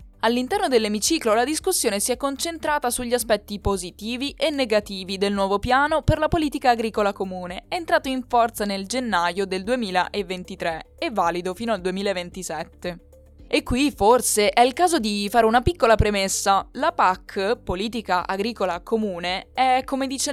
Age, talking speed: 20-39, 150 wpm